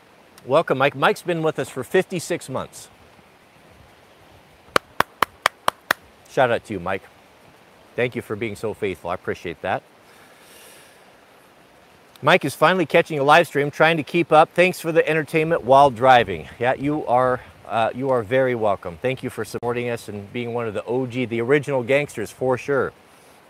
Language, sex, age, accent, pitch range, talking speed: Italian, male, 50-69, American, 115-150 Hz, 160 wpm